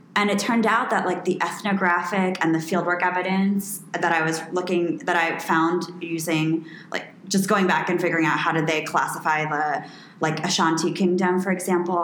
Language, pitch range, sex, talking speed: English, 165-200 Hz, female, 185 wpm